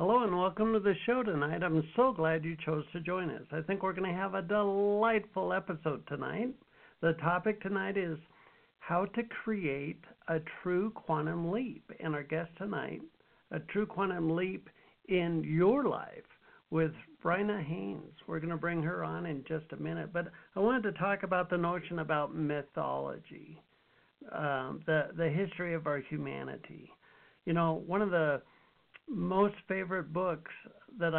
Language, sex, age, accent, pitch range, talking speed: English, male, 60-79, American, 160-195 Hz, 165 wpm